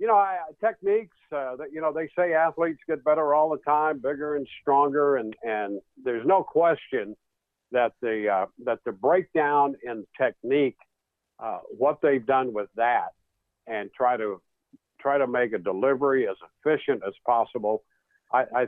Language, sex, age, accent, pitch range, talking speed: English, male, 60-79, American, 120-155 Hz, 165 wpm